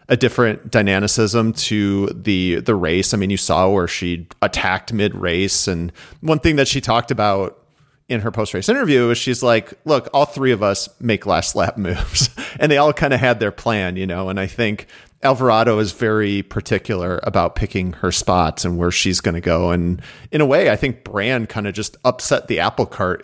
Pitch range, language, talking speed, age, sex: 95-130 Hz, English, 200 wpm, 40-59, male